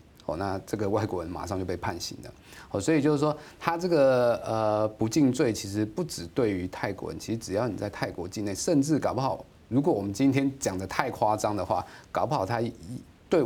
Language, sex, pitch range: Chinese, male, 100-135 Hz